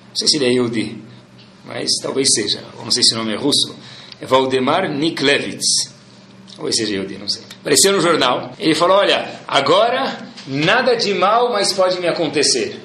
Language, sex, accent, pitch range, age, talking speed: Portuguese, male, Brazilian, 130-200 Hz, 40-59, 180 wpm